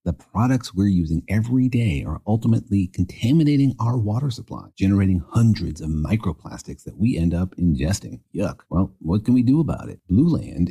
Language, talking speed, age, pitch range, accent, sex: English, 175 wpm, 40-59, 90-120 Hz, American, male